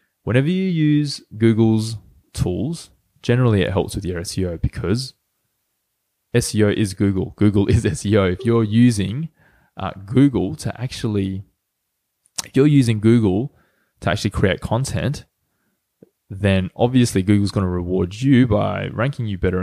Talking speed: 135 wpm